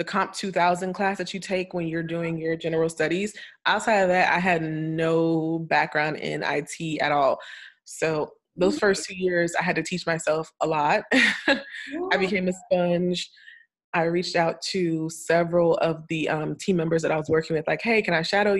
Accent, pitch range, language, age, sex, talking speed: American, 160-185 Hz, English, 20-39, female, 195 wpm